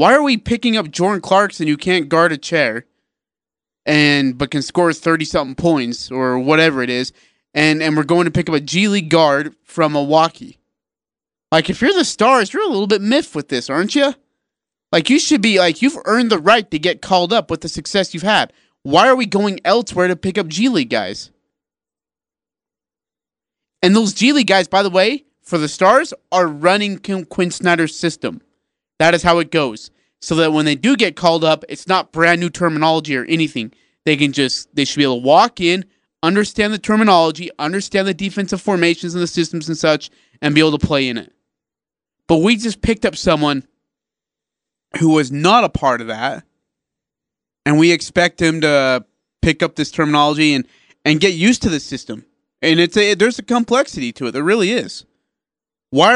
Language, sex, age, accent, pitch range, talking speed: English, male, 30-49, American, 155-205 Hz, 200 wpm